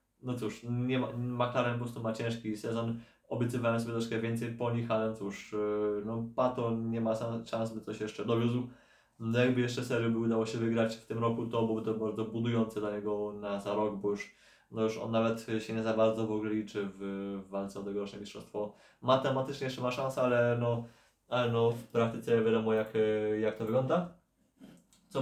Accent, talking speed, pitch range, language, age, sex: native, 195 wpm, 110-120 Hz, Polish, 20-39, male